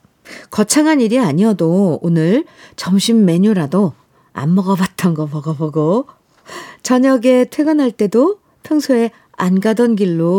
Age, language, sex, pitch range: 50-69, Korean, female, 160-235 Hz